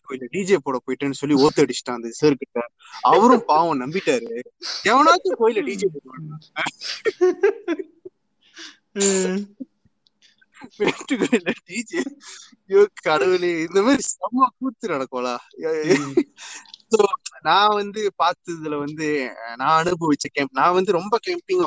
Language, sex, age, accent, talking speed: Tamil, male, 20-39, native, 40 wpm